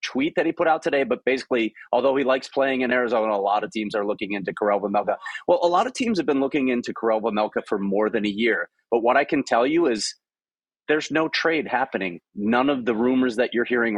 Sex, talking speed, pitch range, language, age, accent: male, 245 wpm, 115-195 Hz, English, 30-49, American